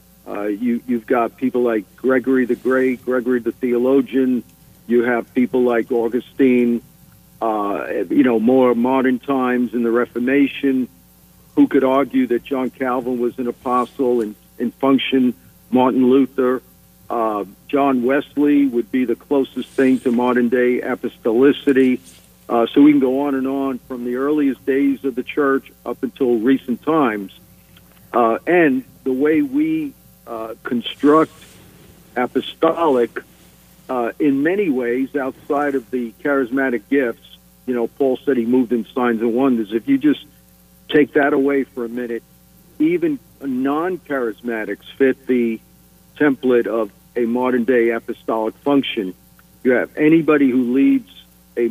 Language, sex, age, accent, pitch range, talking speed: English, male, 50-69, American, 120-135 Hz, 145 wpm